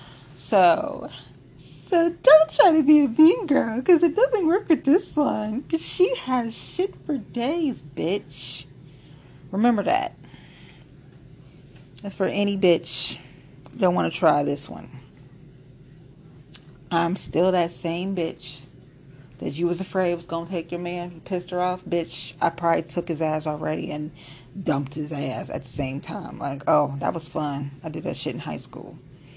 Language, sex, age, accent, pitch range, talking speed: English, female, 30-49, American, 140-195 Hz, 170 wpm